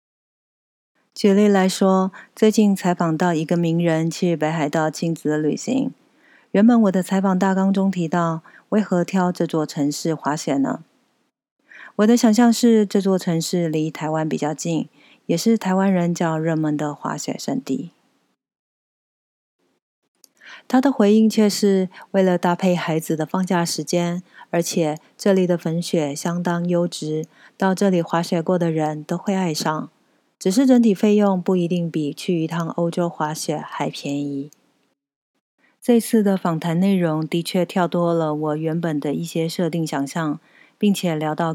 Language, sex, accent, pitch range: Chinese, female, native, 160-195 Hz